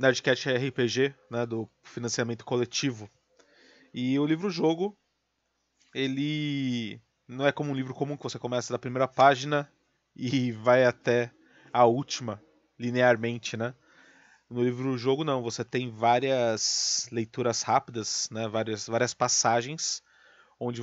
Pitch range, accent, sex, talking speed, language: 115-140 Hz, Brazilian, male, 120 wpm, Portuguese